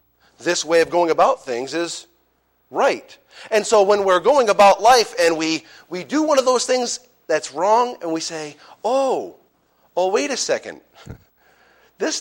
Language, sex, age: English, male, 40-59